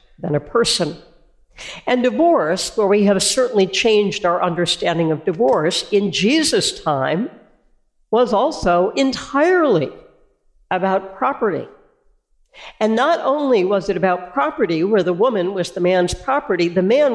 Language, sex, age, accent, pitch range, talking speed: English, female, 60-79, American, 180-235 Hz, 135 wpm